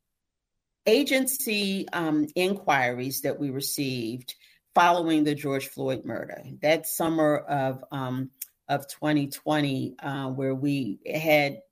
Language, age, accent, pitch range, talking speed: English, 40-59, American, 140-160 Hz, 110 wpm